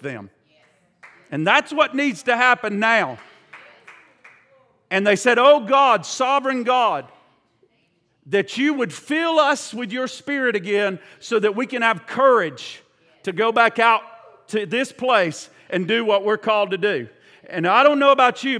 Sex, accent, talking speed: male, American, 160 wpm